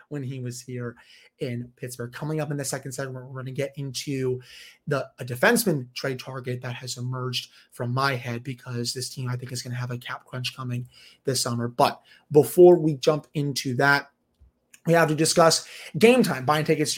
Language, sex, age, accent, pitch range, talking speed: English, male, 30-49, American, 130-170 Hz, 205 wpm